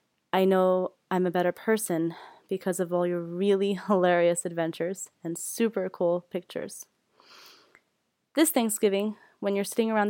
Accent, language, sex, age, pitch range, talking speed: American, English, female, 20-39, 175-225 Hz, 135 wpm